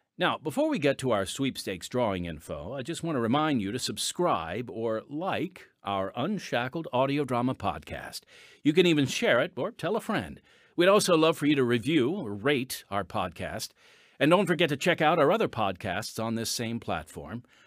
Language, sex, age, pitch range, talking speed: English, male, 50-69, 110-185 Hz, 195 wpm